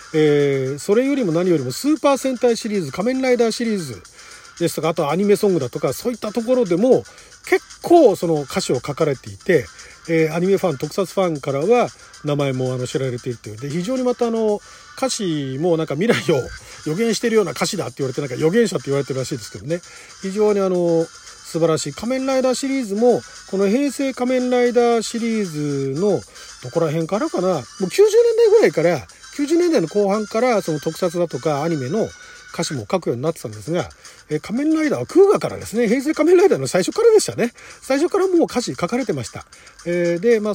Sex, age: male, 40-59